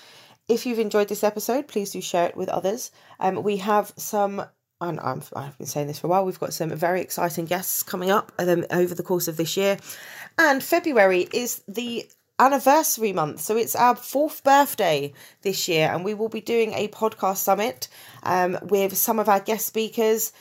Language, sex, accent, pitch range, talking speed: English, female, British, 165-215 Hz, 195 wpm